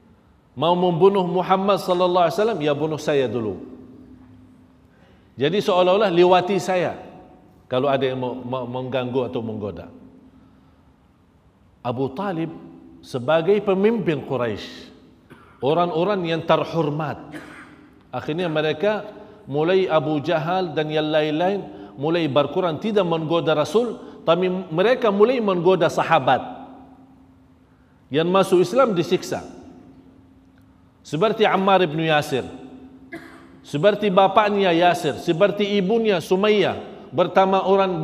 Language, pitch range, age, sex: Indonesian, 145-200 Hz, 50-69, male